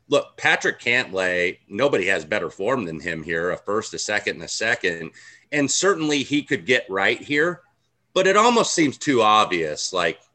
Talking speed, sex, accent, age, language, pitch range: 180 wpm, male, American, 30-49, English, 90-125 Hz